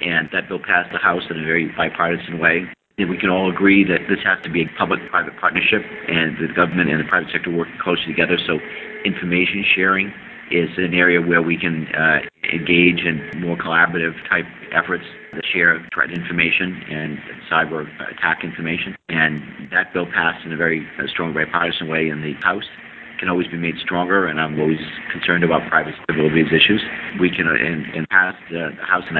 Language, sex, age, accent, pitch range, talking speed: English, male, 50-69, American, 80-90 Hz, 195 wpm